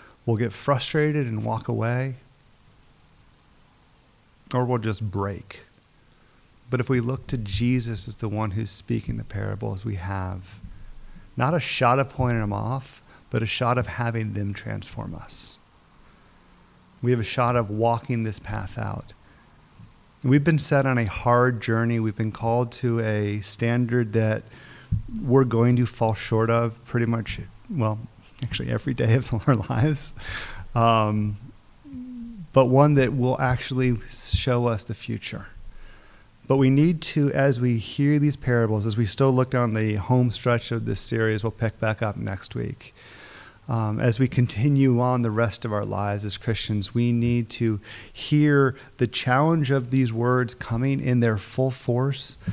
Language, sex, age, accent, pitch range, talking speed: English, male, 40-59, American, 105-125 Hz, 160 wpm